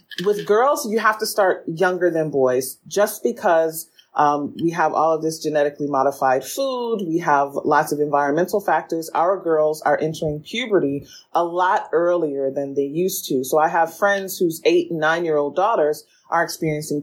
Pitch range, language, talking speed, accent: 150-190 Hz, English, 175 wpm, American